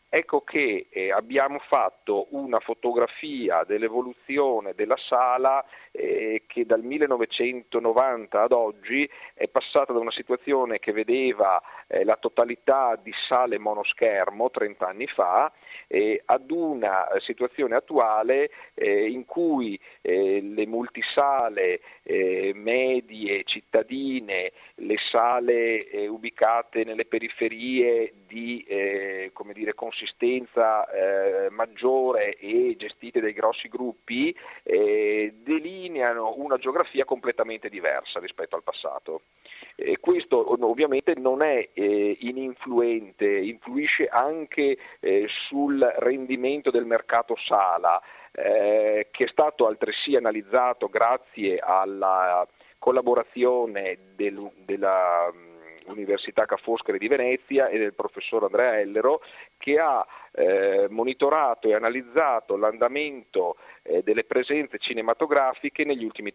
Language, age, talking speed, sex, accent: Italian, 40-59, 105 wpm, male, native